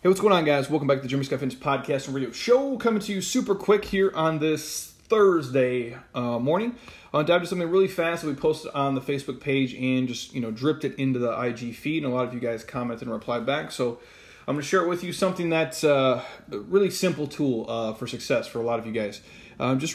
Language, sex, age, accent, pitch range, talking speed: English, male, 30-49, American, 125-155 Hz, 260 wpm